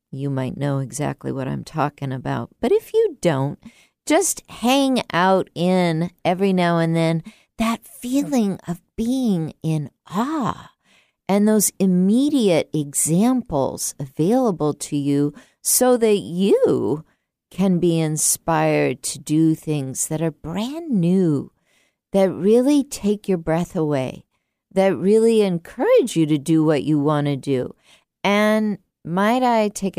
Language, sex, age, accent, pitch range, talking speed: English, female, 50-69, American, 155-210 Hz, 135 wpm